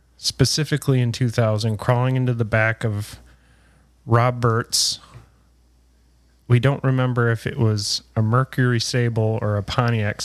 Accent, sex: American, male